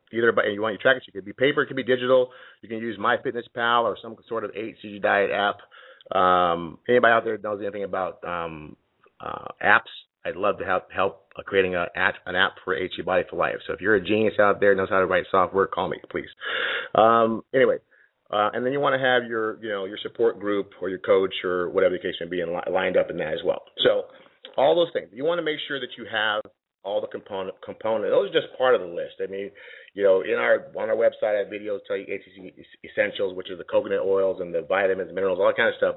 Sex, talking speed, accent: male, 250 wpm, American